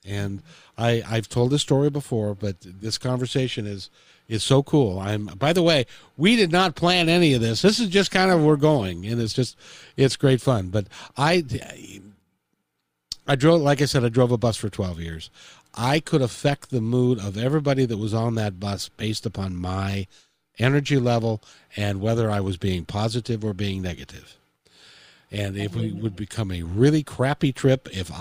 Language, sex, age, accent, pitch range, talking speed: English, male, 50-69, American, 100-150 Hz, 185 wpm